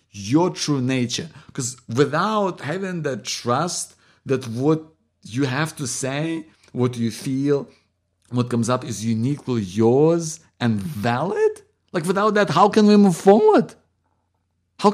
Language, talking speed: English, 135 wpm